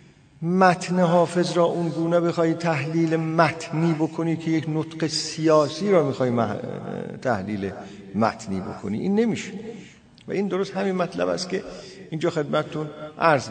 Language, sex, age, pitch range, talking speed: Persian, male, 50-69, 165-215 Hz, 135 wpm